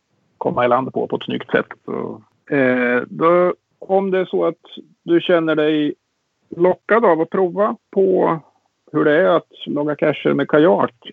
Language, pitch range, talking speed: Swedish, 125-165 Hz, 175 wpm